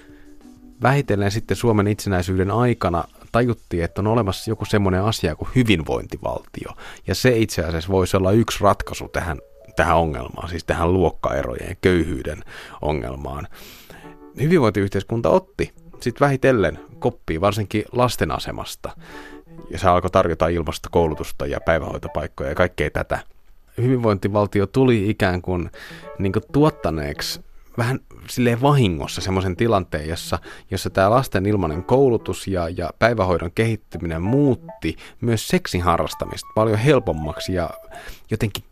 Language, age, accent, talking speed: Finnish, 30-49, native, 120 wpm